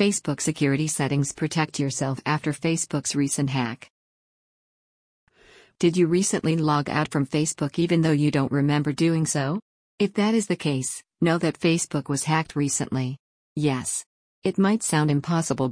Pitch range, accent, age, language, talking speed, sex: 140-165 Hz, American, 50-69, English, 150 wpm, female